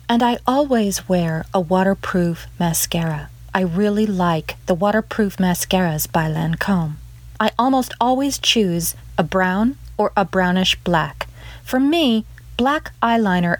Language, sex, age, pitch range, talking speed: English, female, 40-59, 170-220 Hz, 130 wpm